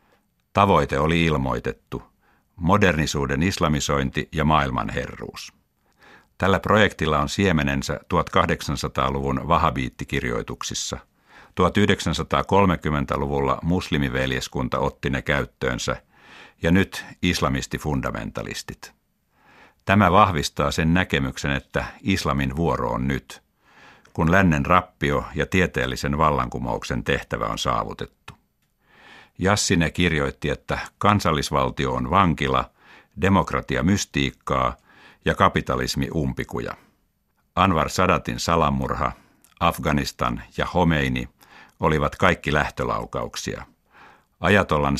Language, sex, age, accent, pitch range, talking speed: Finnish, male, 60-79, native, 70-90 Hz, 80 wpm